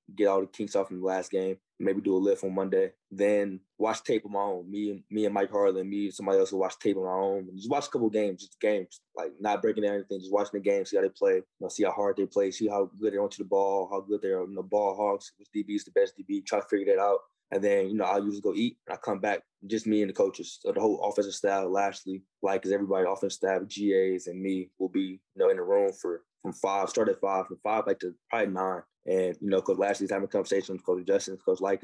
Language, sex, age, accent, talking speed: English, male, 20-39, American, 290 wpm